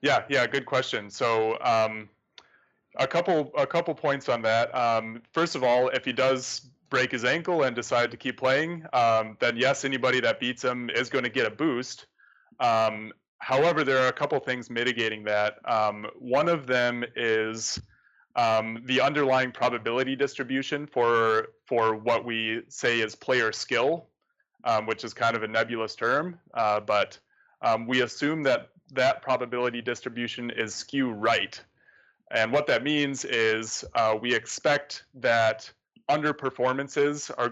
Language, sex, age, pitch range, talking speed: English, male, 20-39, 110-130 Hz, 160 wpm